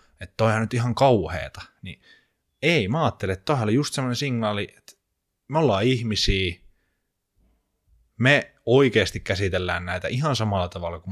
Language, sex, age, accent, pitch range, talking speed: Finnish, male, 20-39, native, 90-110 Hz, 130 wpm